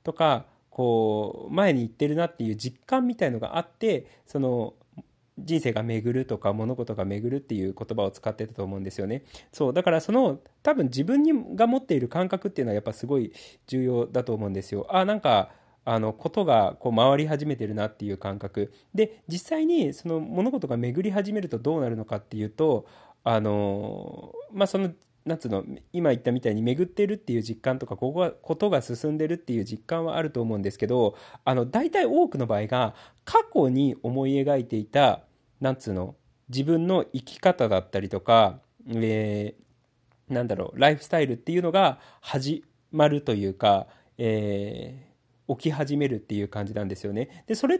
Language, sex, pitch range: Japanese, male, 110-165 Hz